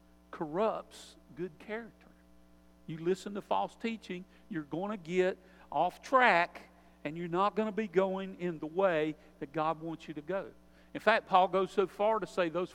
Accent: American